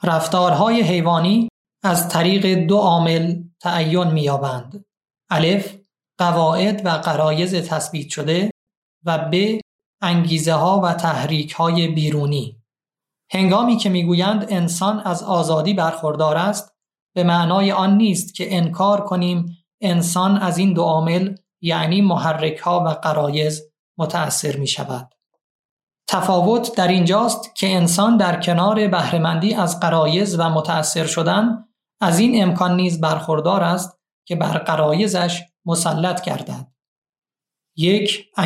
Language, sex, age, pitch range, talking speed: Persian, male, 30-49, 165-195 Hz, 115 wpm